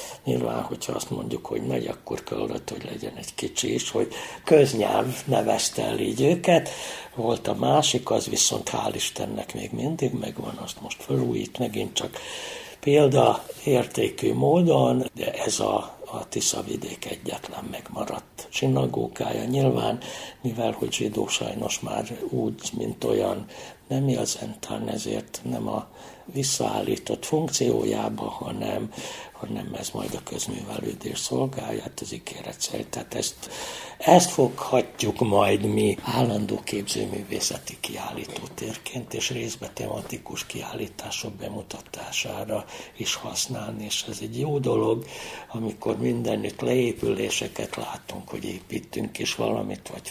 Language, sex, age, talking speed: Hungarian, male, 60-79, 120 wpm